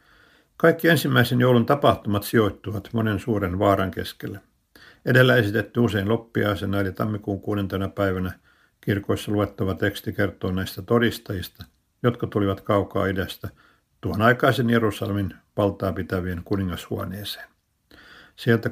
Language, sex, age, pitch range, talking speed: Finnish, male, 60-79, 95-115 Hz, 110 wpm